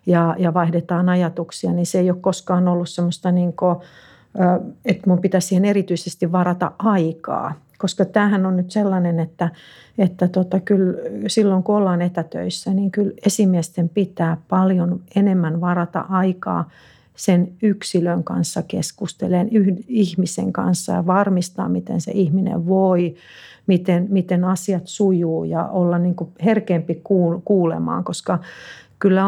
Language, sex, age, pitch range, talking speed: Finnish, female, 50-69, 170-190 Hz, 125 wpm